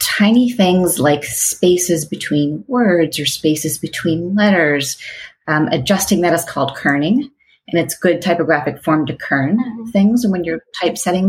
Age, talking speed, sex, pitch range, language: 30-49, 145 wpm, female, 125-165 Hz, English